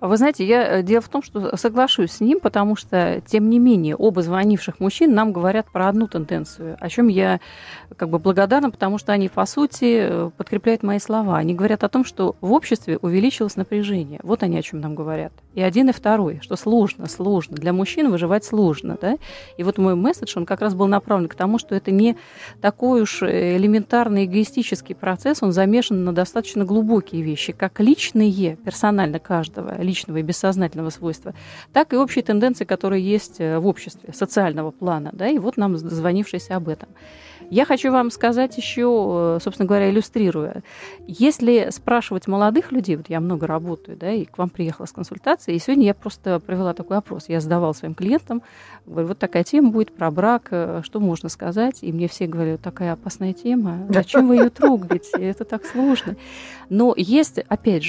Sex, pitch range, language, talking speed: female, 180-230 Hz, Russian, 180 wpm